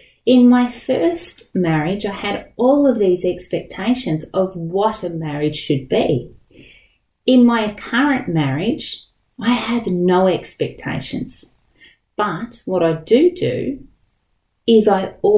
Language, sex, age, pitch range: English, female, 30-49, 170-225 Hz